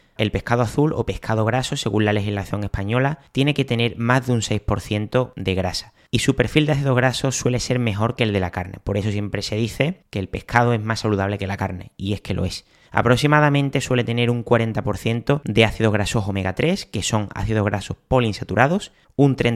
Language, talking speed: Spanish, 205 wpm